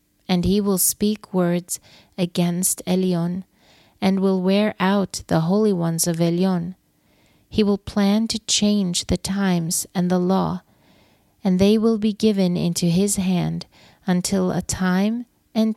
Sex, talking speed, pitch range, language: female, 145 wpm, 175-200 Hz, English